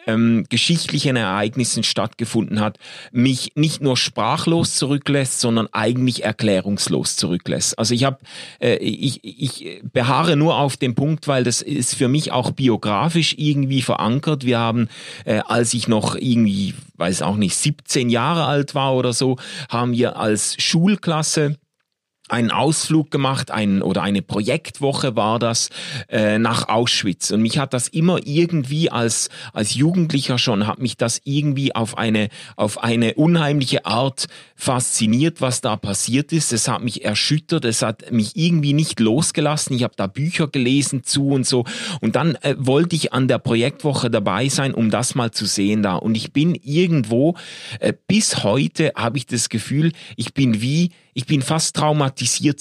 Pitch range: 115-150 Hz